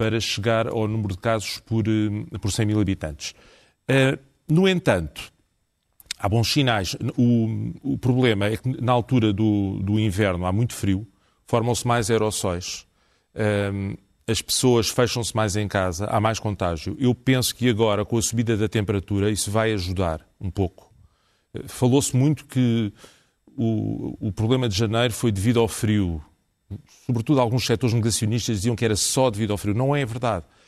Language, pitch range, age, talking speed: Portuguese, 105-125 Hz, 40-59, 160 wpm